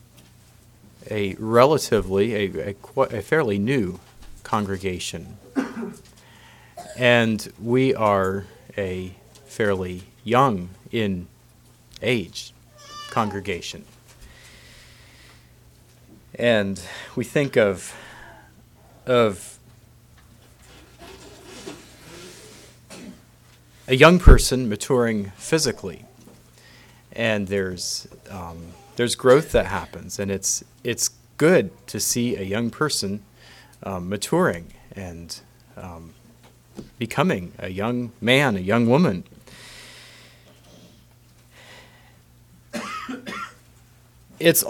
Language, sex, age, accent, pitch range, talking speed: English, male, 40-59, American, 95-120 Hz, 75 wpm